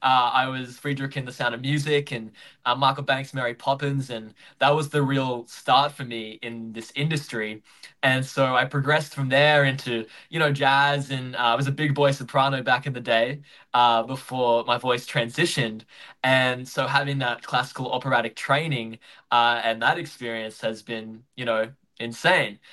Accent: Australian